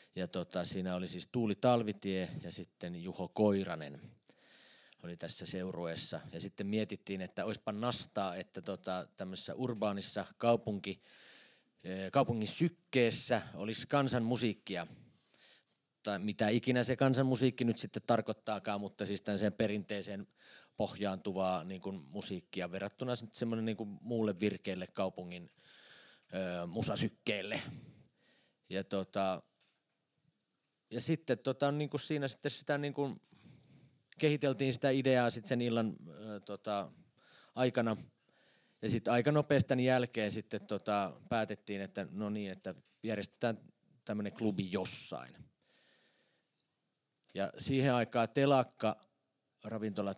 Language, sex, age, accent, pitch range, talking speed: Finnish, male, 30-49, native, 95-125 Hz, 110 wpm